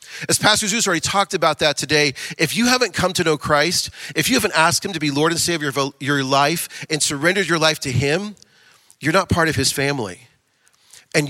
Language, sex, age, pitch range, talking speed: English, male, 40-59, 140-185 Hz, 220 wpm